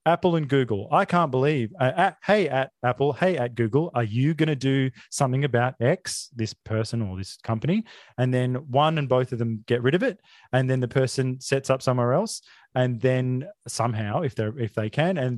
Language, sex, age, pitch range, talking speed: English, male, 30-49, 120-165 Hz, 210 wpm